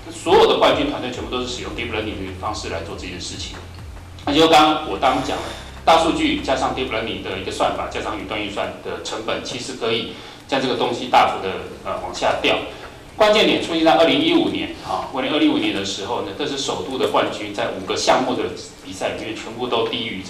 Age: 30-49